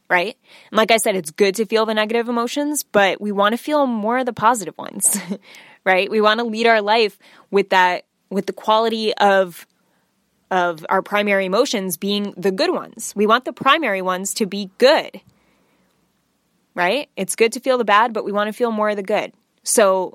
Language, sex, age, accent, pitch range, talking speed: English, female, 10-29, American, 195-235 Hz, 205 wpm